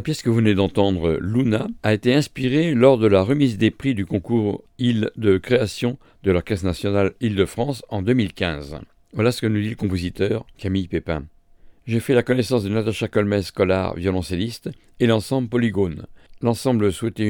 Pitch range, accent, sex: 100-120 Hz, French, male